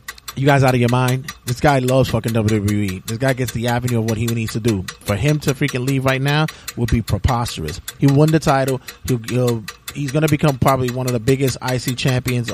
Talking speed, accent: 235 wpm, American